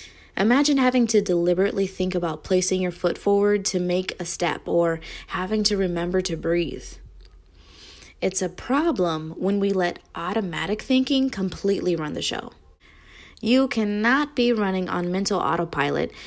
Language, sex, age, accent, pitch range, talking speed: English, female, 20-39, American, 170-220 Hz, 145 wpm